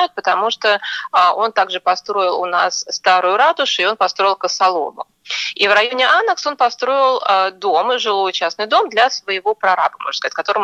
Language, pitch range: Russian, 185-270 Hz